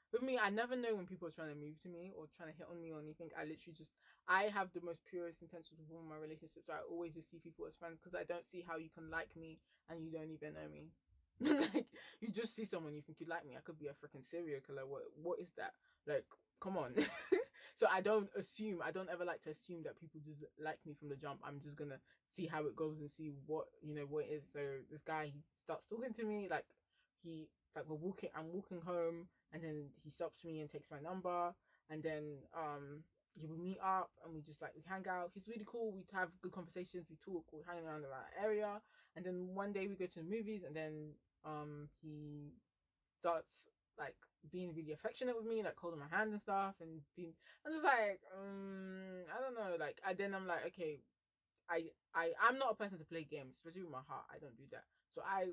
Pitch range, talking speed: 155-190 Hz, 245 wpm